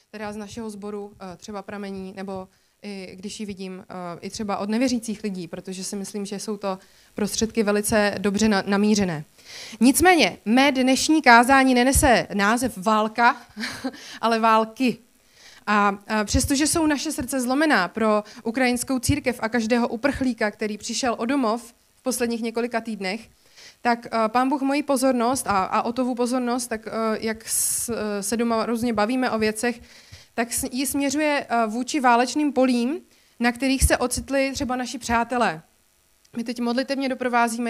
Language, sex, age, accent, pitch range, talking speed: Czech, female, 20-39, native, 210-250 Hz, 140 wpm